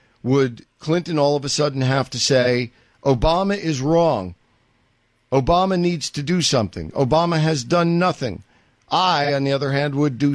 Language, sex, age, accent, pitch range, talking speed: English, male, 50-69, American, 120-155 Hz, 160 wpm